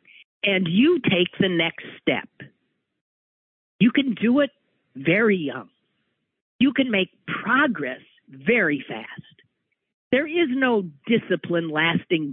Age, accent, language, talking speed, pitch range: 50-69, American, English, 110 wpm, 165-235 Hz